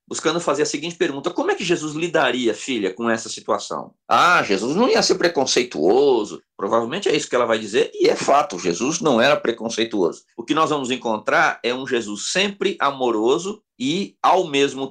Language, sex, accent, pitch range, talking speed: Portuguese, male, Brazilian, 125-205 Hz, 190 wpm